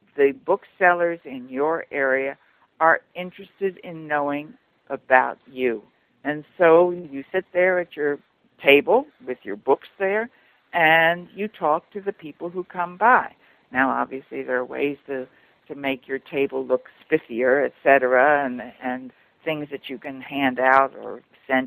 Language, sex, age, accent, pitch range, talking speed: English, female, 60-79, American, 130-165 Hz, 155 wpm